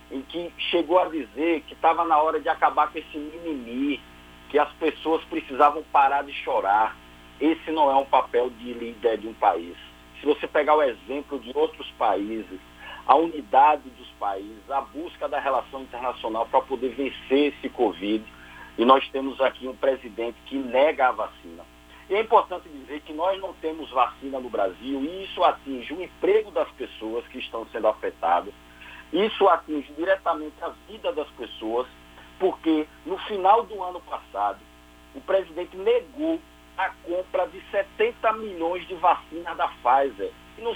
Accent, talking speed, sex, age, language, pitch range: Brazilian, 165 wpm, male, 50-69, Portuguese, 115-180 Hz